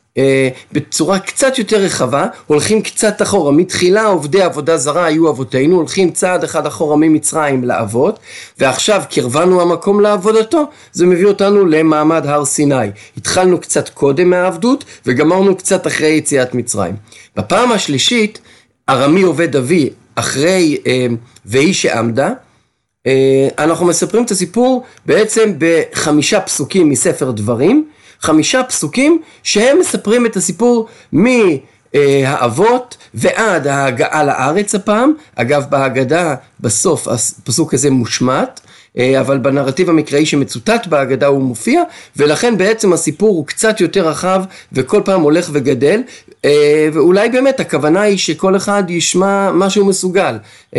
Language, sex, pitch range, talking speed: Hebrew, male, 140-205 Hz, 120 wpm